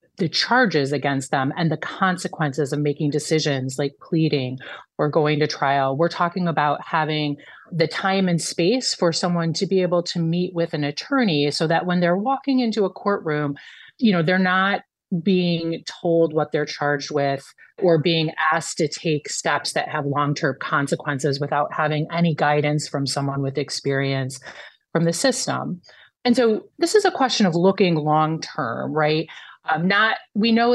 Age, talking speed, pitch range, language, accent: 30-49, 175 wpm, 150-190 Hz, English, American